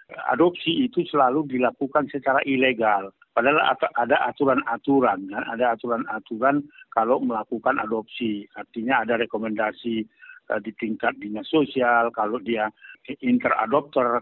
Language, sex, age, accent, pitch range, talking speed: Indonesian, male, 50-69, native, 115-140 Hz, 110 wpm